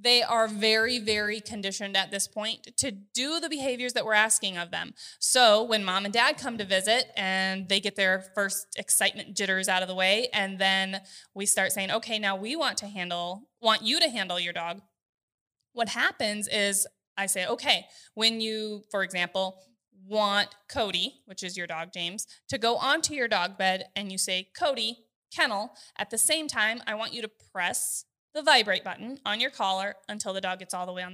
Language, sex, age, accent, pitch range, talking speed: English, female, 20-39, American, 190-250 Hz, 200 wpm